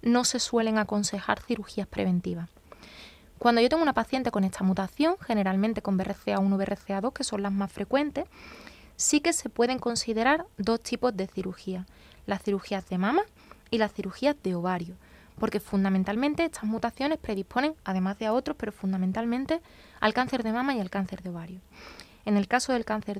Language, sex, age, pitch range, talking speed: Spanish, female, 20-39, 195-250 Hz, 175 wpm